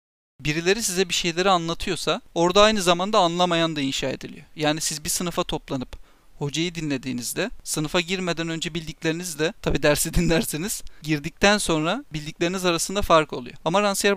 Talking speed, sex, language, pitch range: 145 wpm, male, Turkish, 150-180 Hz